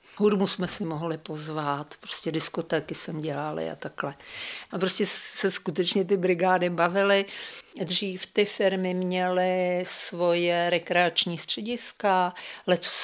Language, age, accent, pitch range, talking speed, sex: Czech, 50-69, native, 170-200 Hz, 120 wpm, female